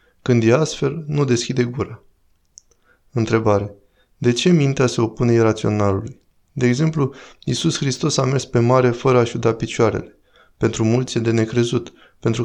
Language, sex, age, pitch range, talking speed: Romanian, male, 20-39, 105-125 Hz, 150 wpm